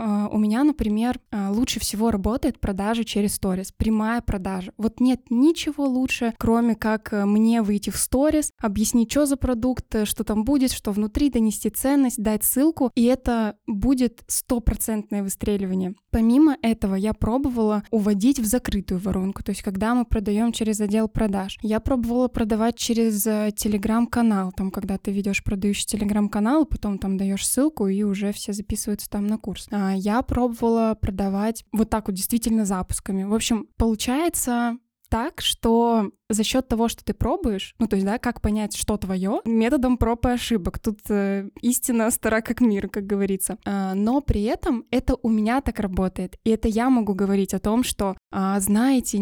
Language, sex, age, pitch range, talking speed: Russian, female, 10-29, 210-240 Hz, 160 wpm